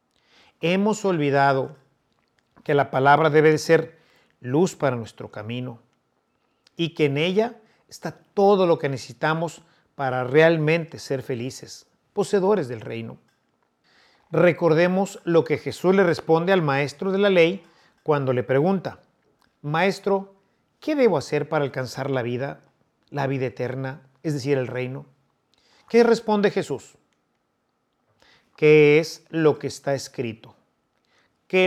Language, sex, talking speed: Spanish, male, 125 wpm